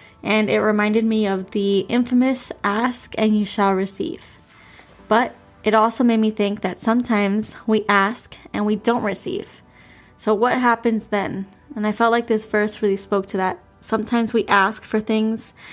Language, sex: English, female